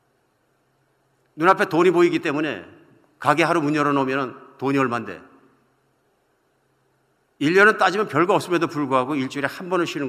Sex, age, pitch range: male, 50-69, 110-165 Hz